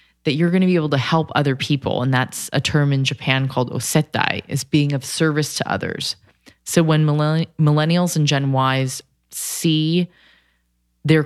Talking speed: 170 wpm